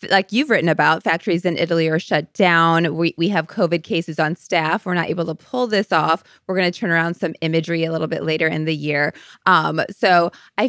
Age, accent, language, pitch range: 20-39, American, English, 170-230 Hz